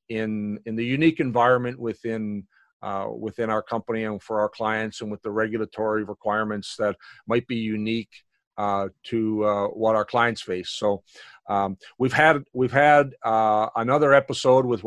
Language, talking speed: English, 160 wpm